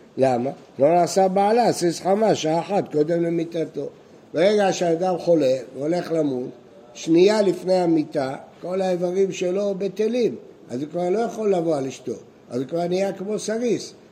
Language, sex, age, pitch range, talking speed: Hebrew, male, 60-79, 145-195 Hz, 155 wpm